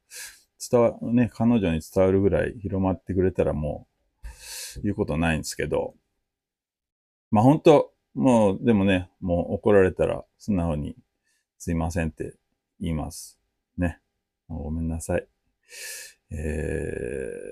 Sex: male